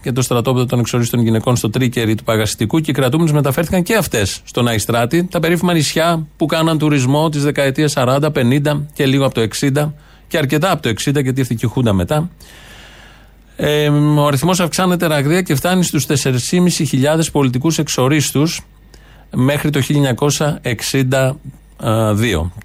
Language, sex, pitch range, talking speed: Greek, male, 115-150 Hz, 150 wpm